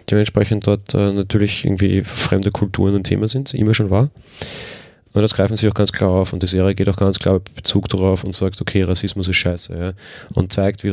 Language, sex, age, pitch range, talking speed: German, male, 30-49, 95-105 Hz, 225 wpm